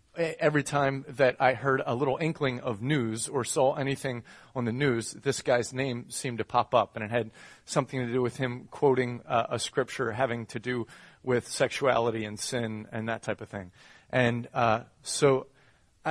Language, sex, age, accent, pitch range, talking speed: English, male, 30-49, American, 120-160 Hz, 185 wpm